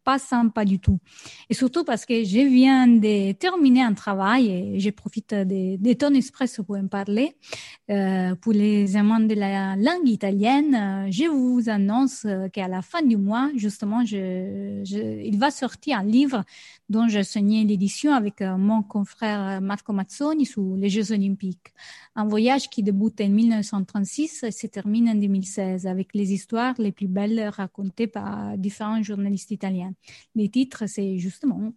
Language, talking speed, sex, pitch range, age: French, 160 wpm, female, 200-250 Hz, 30-49